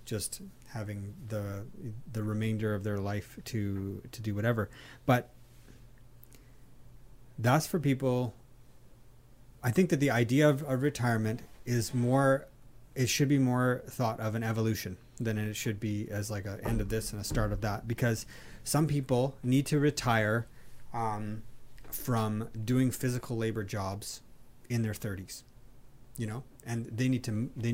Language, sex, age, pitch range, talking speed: English, male, 30-49, 110-125 Hz, 155 wpm